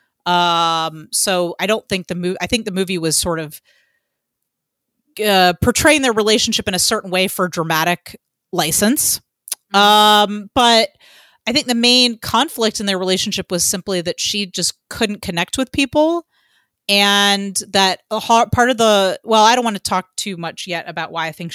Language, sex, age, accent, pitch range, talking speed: English, female, 30-49, American, 175-220 Hz, 180 wpm